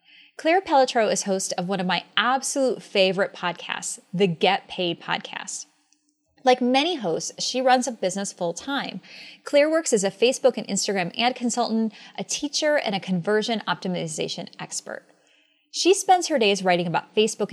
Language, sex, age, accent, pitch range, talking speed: English, female, 20-39, American, 190-260 Hz, 160 wpm